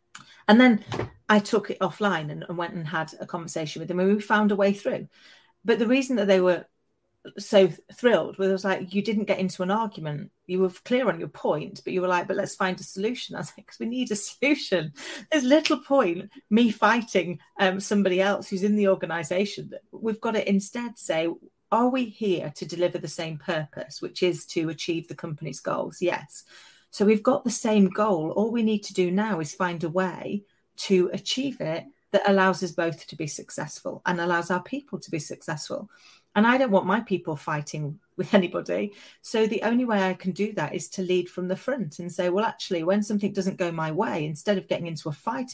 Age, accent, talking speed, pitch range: 40-59, British, 220 wpm, 175-210 Hz